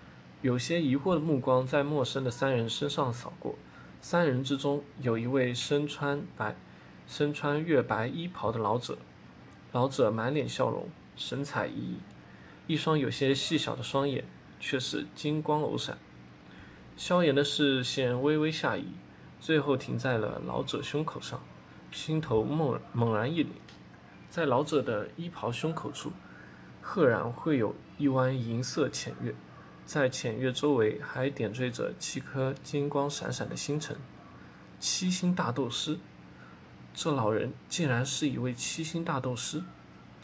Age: 20-39